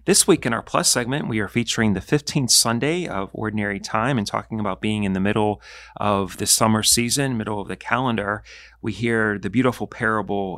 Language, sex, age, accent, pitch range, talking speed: English, male, 40-59, American, 100-115 Hz, 200 wpm